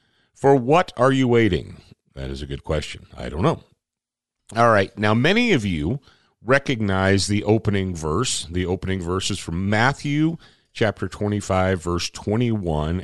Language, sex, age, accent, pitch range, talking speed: English, male, 50-69, American, 85-120 Hz, 150 wpm